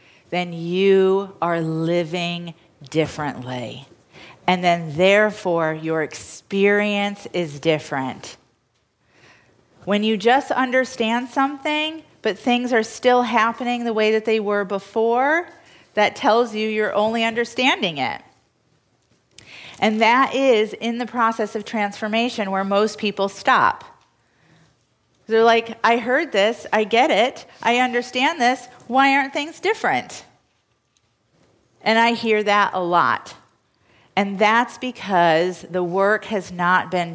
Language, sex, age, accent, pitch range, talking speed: English, female, 40-59, American, 165-225 Hz, 125 wpm